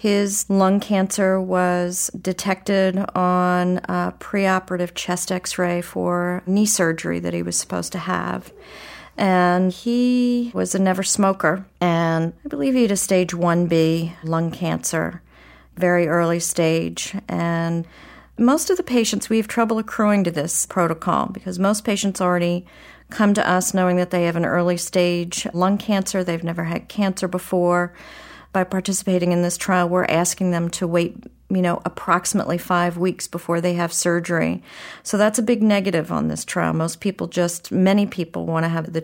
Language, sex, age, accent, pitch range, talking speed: English, female, 40-59, American, 170-190 Hz, 165 wpm